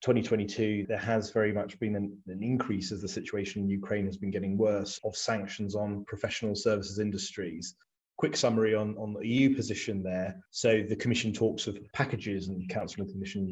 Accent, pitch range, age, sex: British, 105-120 Hz, 30-49, male